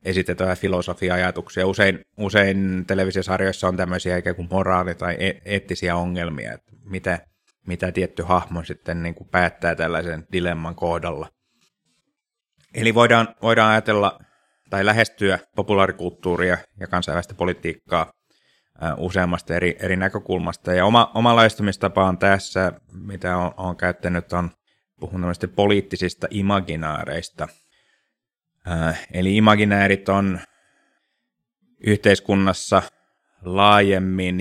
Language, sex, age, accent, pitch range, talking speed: Finnish, male, 30-49, native, 90-100 Hz, 90 wpm